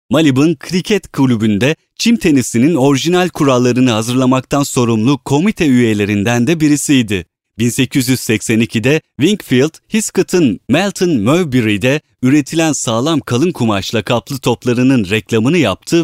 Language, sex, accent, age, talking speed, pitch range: Turkish, male, native, 30-49, 95 wpm, 120-165 Hz